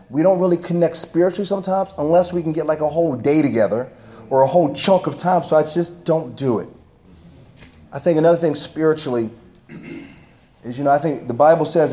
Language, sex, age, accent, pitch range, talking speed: English, male, 30-49, American, 115-180 Hz, 200 wpm